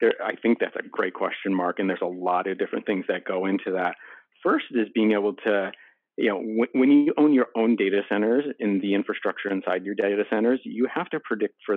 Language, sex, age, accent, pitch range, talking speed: English, male, 40-59, American, 95-110 Hz, 225 wpm